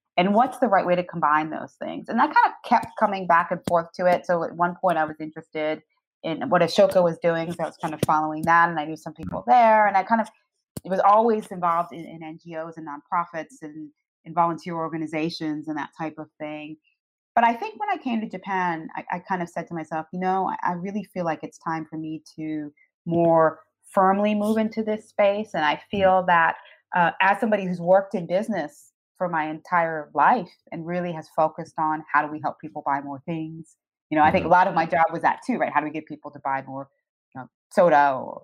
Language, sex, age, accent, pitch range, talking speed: English, female, 30-49, American, 155-190 Hz, 235 wpm